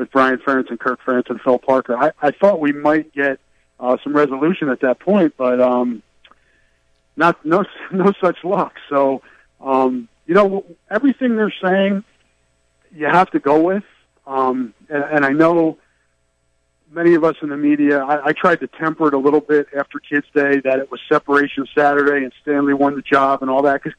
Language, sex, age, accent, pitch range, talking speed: English, male, 50-69, American, 130-165 Hz, 195 wpm